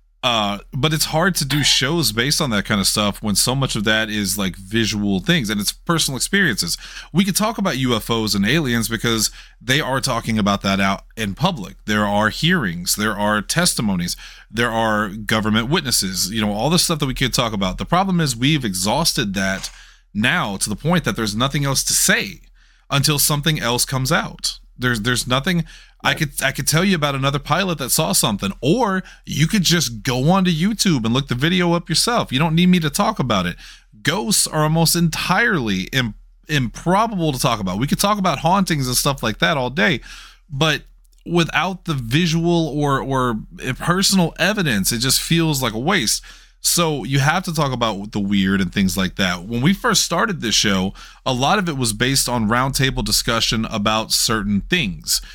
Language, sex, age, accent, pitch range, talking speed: English, male, 30-49, American, 110-170 Hz, 200 wpm